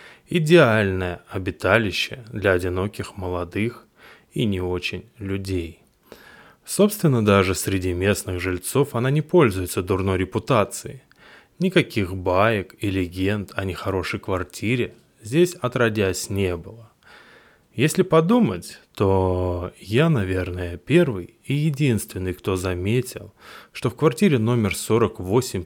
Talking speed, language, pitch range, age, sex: 105 wpm, Russian, 95-120 Hz, 20-39, male